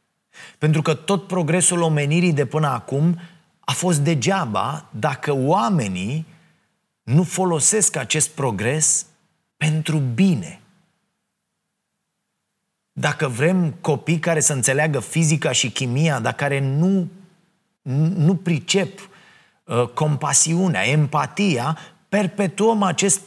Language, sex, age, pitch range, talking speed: Romanian, male, 30-49, 130-180 Hz, 95 wpm